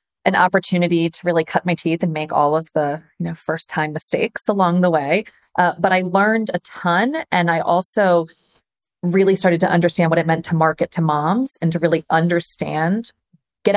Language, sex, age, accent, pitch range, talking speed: English, female, 30-49, American, 160-180 Hz, 195 wpm